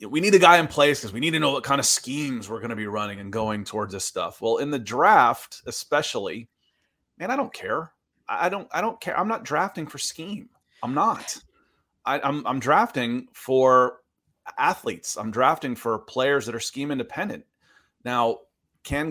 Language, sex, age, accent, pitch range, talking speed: English, male, 30-49, American, 120-185 Hz, 200 wpm